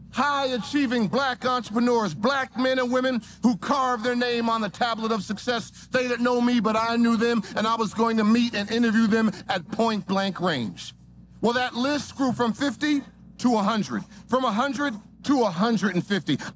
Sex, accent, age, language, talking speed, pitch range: male, American, 50-69, English, 175 wpm, 205-250 Hz